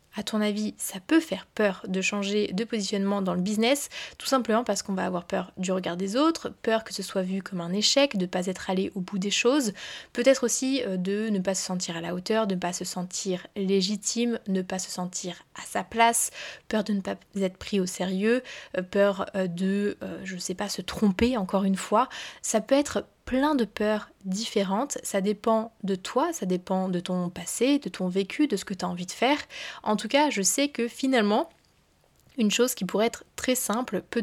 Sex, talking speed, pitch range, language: female, 220 wpm, 190-240 Hz, French